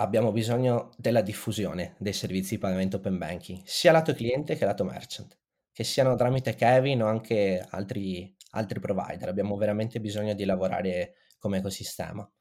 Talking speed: 155 wpm